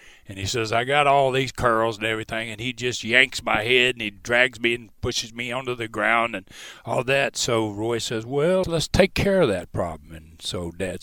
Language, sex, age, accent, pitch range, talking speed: English, male, 60-79, American, 90-115 Hz, 230 wpm